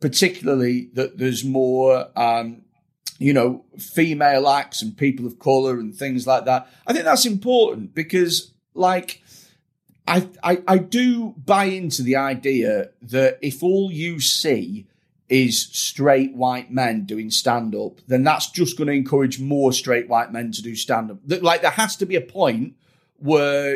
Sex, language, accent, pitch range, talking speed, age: male, English, British, 130-175 Hz, 160 wpm, 40-59